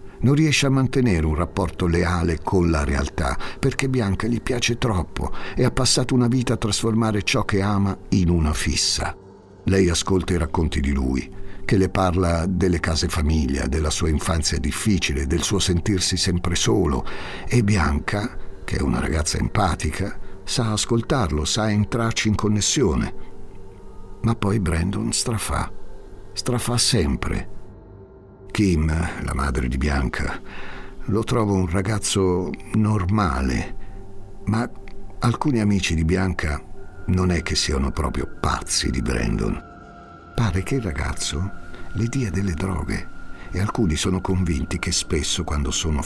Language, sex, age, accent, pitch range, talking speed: Italian, male, 60-79, native, 85-105 Hz, 140 wpm